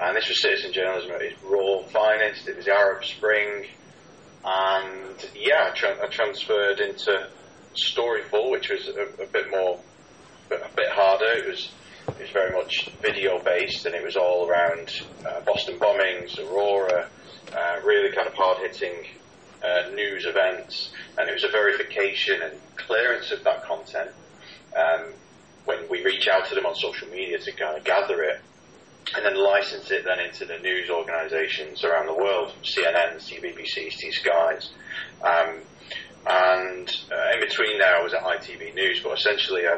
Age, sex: 30-49, male